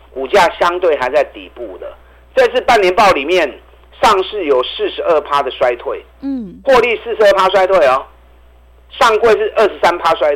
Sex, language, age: male, Chinese, 50-69